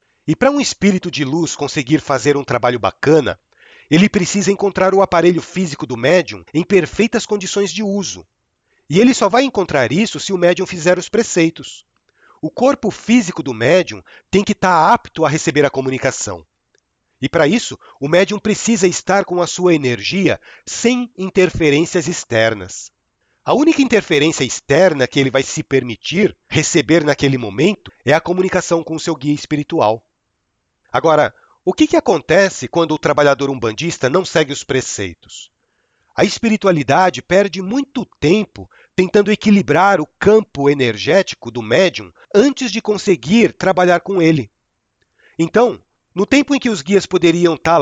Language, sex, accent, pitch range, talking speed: Portuguese, male, Brazilian, 145-200 Hz, 155 wpm